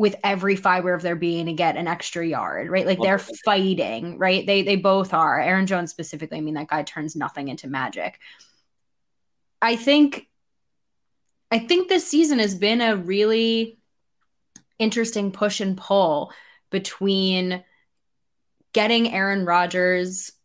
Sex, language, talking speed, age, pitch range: female, English, 145 wpm, 10-29, 175-215 Hz